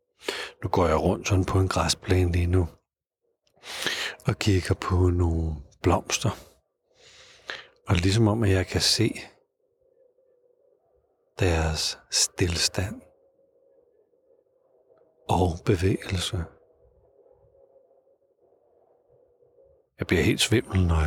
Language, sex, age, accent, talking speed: Danish, male, 60-79, native, 90 wpm